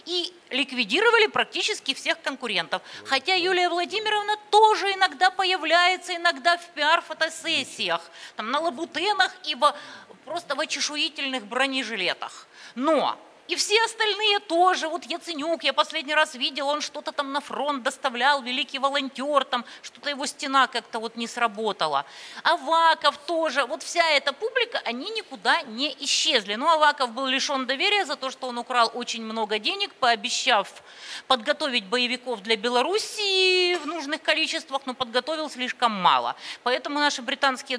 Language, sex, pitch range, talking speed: Russian, female, 245-340 Hz, 140 wpm